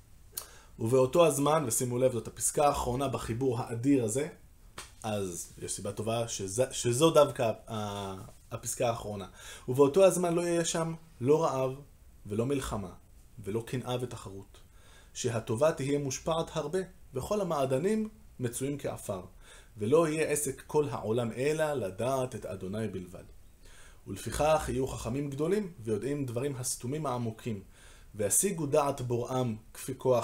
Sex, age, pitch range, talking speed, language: male, 20-39, 110-140 Hz, 125 wpm, Hebrew